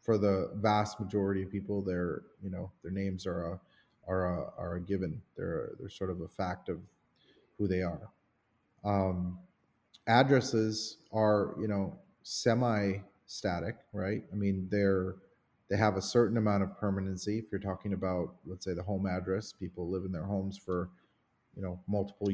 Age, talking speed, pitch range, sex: 30-49, 170 wpm, 95-105 Hz, male